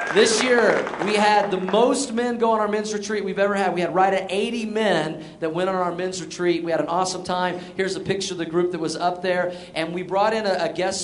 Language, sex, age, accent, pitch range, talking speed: English, male, 40-59, American, 165-195 Hz, 260 wpm